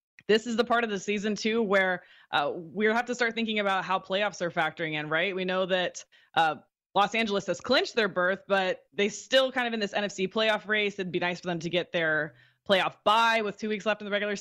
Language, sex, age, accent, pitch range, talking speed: English, female, 20-39, American, 185-240 Hz, 245 wpm